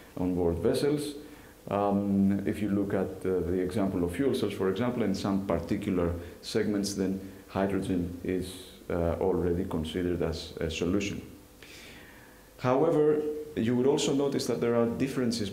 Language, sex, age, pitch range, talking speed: English, male, 40-59, 90-110 Hz, 145 wpm